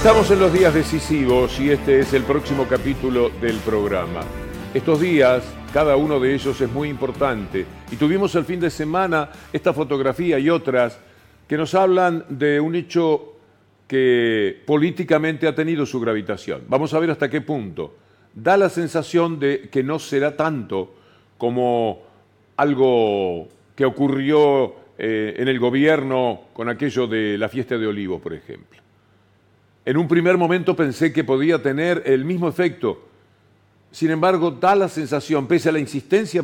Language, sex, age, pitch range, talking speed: Spanish, male, 50-69, 120-160 Hz, 155 wpm